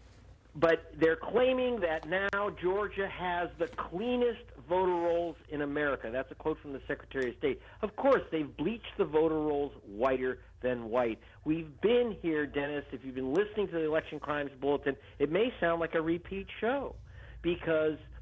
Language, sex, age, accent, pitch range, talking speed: English, male, 50-69, American, 105-160 Hz, 170 wpm